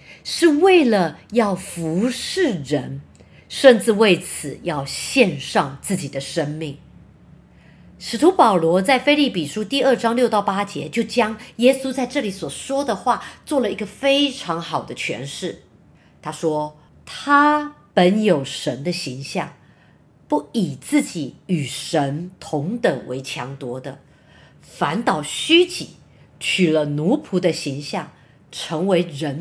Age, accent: 50-69, American